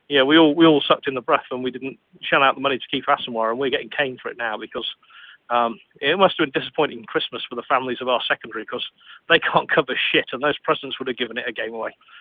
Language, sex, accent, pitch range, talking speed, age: English, male, British, 135-175 Hz, 270 wpm, 40-59